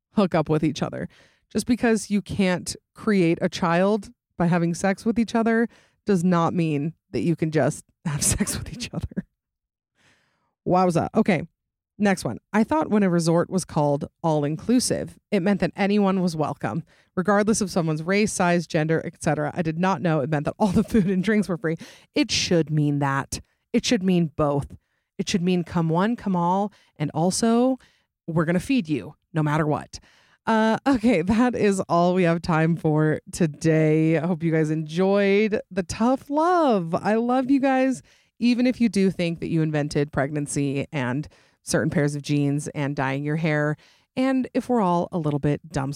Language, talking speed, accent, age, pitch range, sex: English, 190 wpm, American, 30-49, 150-205 Hz, female